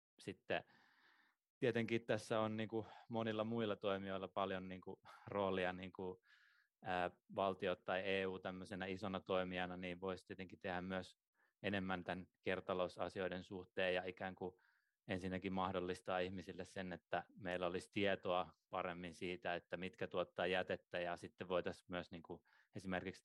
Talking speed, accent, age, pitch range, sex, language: 120 wpm, native, 20-39, 90-100 Hz, male, Finnish